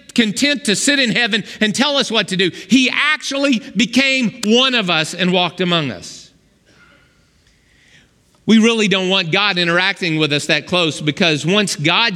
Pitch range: 160-240 Hz